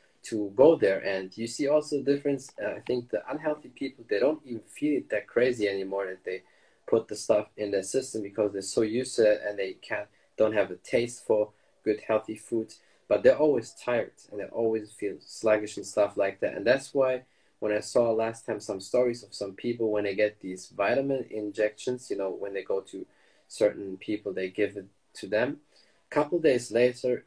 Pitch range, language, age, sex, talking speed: 100-125 Hz, German, 20-39, male, 210 wpm